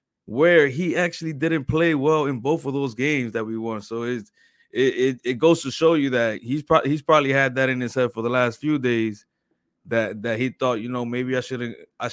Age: 20-39